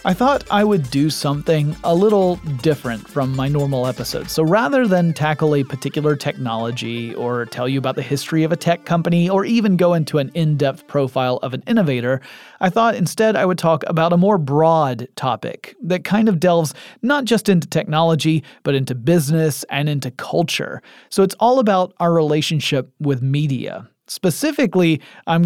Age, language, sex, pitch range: 30-49, English, male, 140-190 Hz